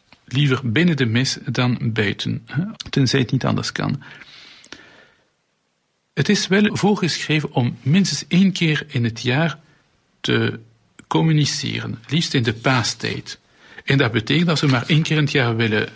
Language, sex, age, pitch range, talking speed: Dutch, male, 50-69, 120-155 Hz, 150 wpm